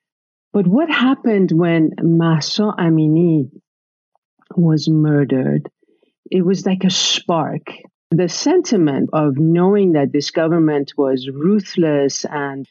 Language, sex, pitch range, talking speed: English, female, 145-180 Hz, 110 wpm